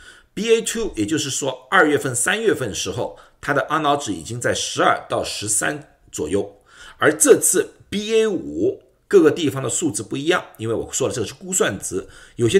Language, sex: Chinese, male